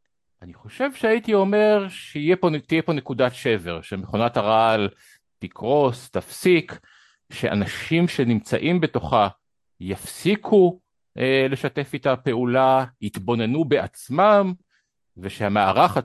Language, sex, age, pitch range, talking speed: Hebrew, male, 50-69, 100-160 Hz, 90 wpm